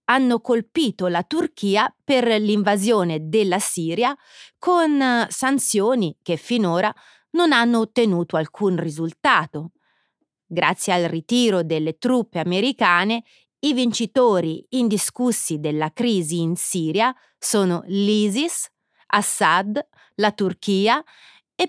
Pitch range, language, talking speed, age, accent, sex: 170-250 Hz, Italian, 100 wpm, 30-49, native, female